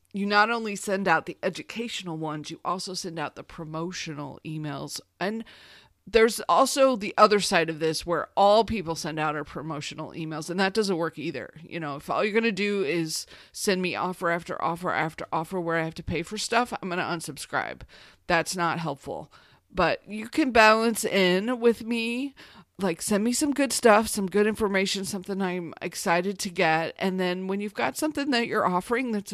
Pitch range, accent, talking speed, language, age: 170-220 Hz, American, 200 wpm, English, 40-59